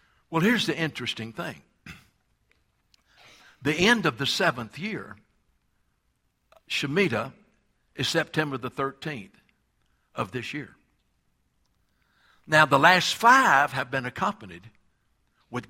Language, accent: English, American